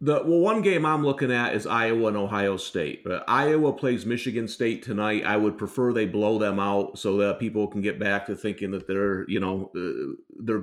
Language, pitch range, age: English, 105-135 Hz, 40-59